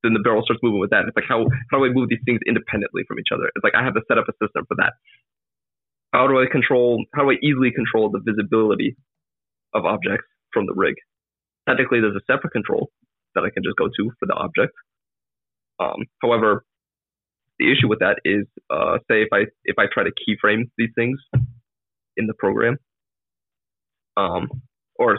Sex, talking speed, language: male, 200 wpm, English